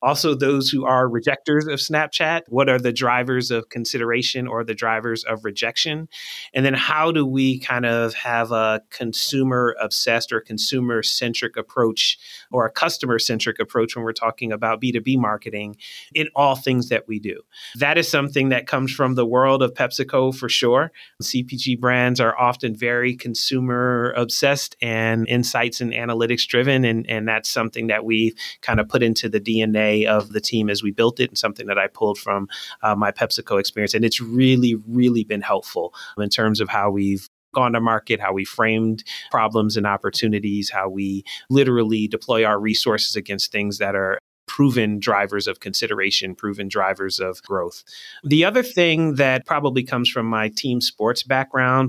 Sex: male